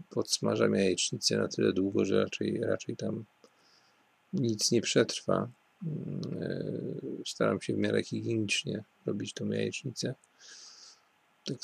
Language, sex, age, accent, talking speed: Polish, male, 40-59, native, 115 wpm